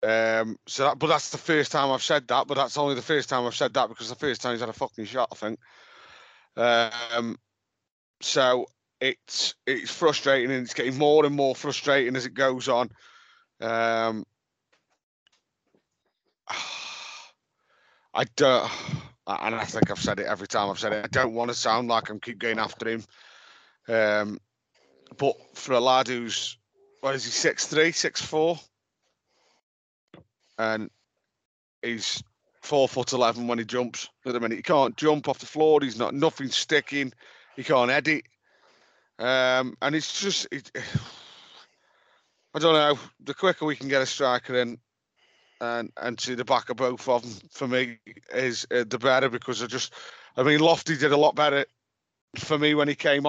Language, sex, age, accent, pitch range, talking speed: English, male, 30-49, British, 120-145 Hz, 175 wpm